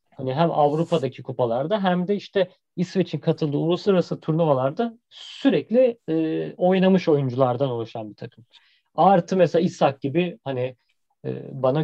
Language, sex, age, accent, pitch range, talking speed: Turkish, male, 40-59, native, 130-185 Hz, 125 wpm